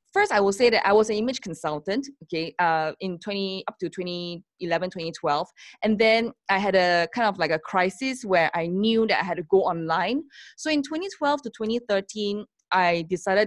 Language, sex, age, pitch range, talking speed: English, female, 20-39, 180-245 Hz, 190 wpm